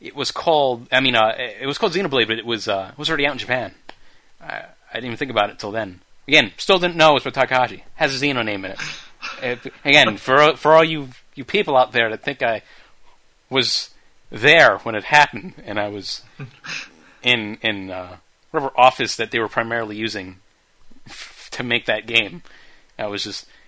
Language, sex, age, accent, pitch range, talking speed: English, male, 30-49, American, 110-140 Hz, 210 wpm